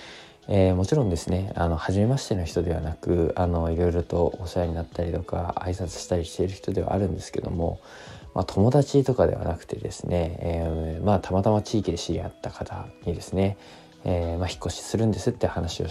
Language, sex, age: Japanese, male, 20-39